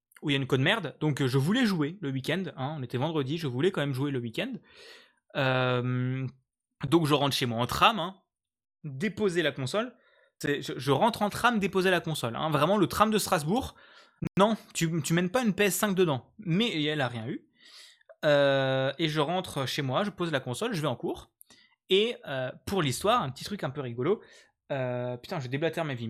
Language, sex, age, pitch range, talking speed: French, male, 20-39, 135-185 Hz, 215 wpm